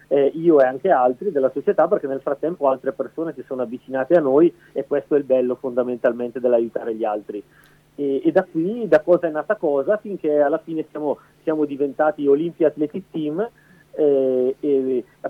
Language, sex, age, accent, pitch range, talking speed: Italian, male, 40-59, native, 135-160 Hz, 180 wpm